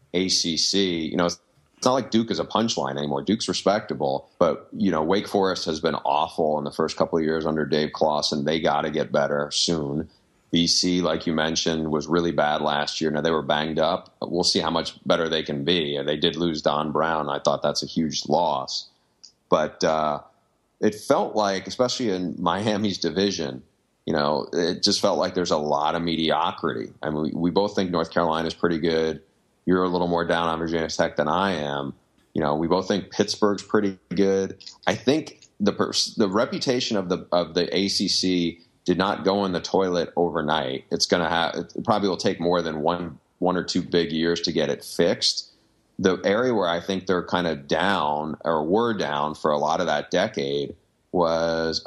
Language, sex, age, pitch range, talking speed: English, male, 30-49, 80-95 Hz, 200 wpm